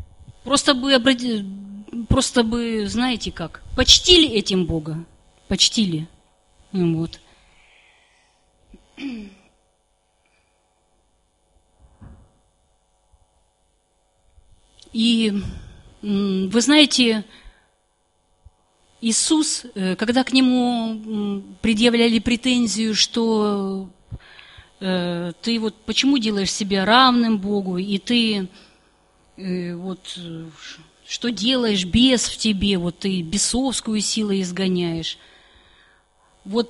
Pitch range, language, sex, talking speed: 160-240 Hz, Russian, female, 70 wpm